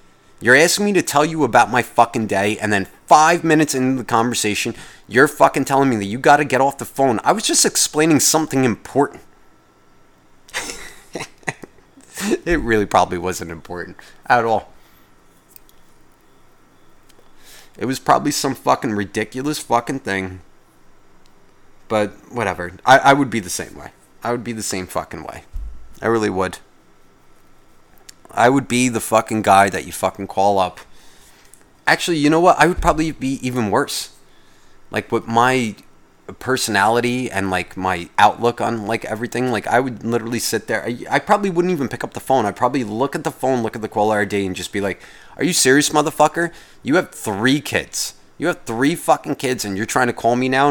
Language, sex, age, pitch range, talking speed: English, male, 30-49, 100-140 Hz, 175 wpm